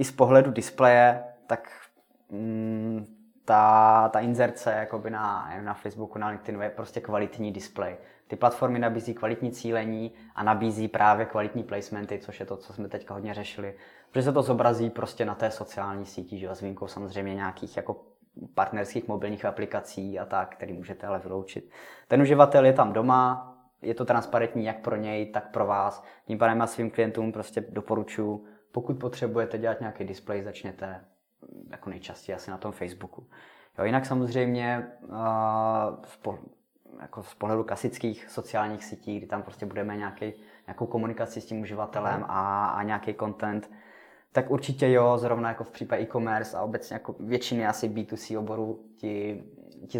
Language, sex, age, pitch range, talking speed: Czech, male, 20-39, 105-115 Hz, 160 wpm